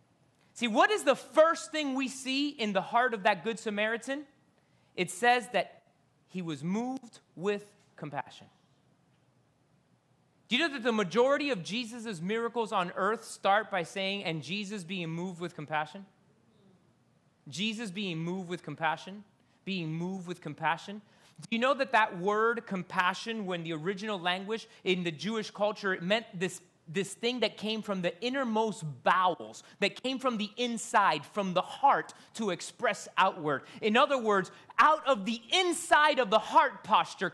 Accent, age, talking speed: American, 30-49, 160 wpm